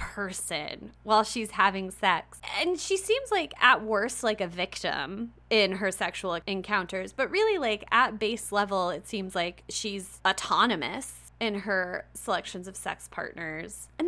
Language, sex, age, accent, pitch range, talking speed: English, female, 20-39, American, 185-250 Hz, 155 wpm